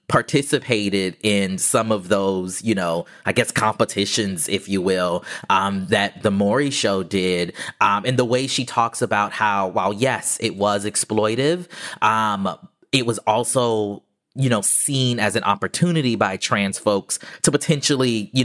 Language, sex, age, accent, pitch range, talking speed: English, male, 20-39, American, 100-120 Hz, 155 wpm